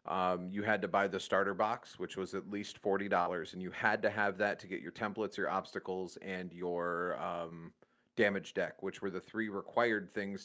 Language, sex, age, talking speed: English, male, 30-49, 205 wpm